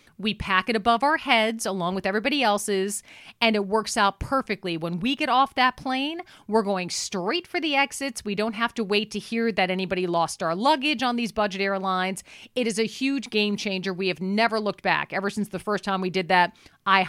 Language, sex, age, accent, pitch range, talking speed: English, female, 40-59, American, 195-260 Hz, 220 wpm